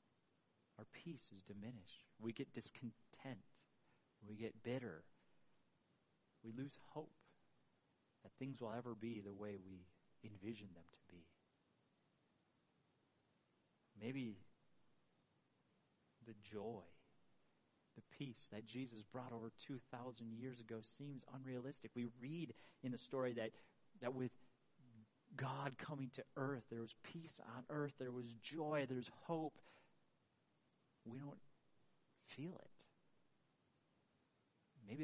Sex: male